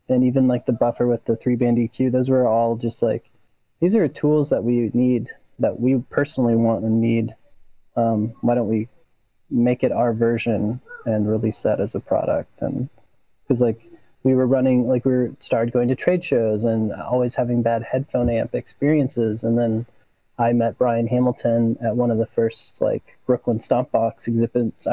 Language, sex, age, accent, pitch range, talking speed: English, male, 20-39, American, 115-130 Hz, 180 wpm